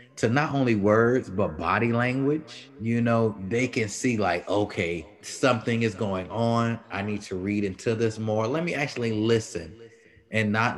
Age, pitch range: 30-49, 95-115 Hz